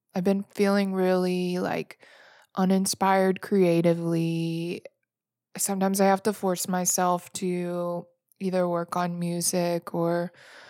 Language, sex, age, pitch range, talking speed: English, female, 20-39, 175-200 Hz, 105 wpm